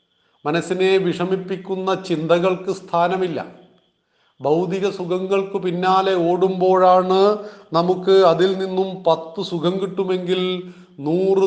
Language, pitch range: Malayalam, 170-195 Hz